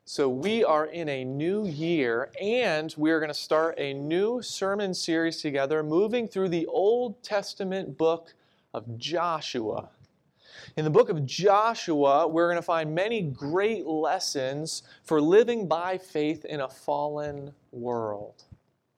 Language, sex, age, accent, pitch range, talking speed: English, male, 30-49, American, 150-200 Hz, 145 wpm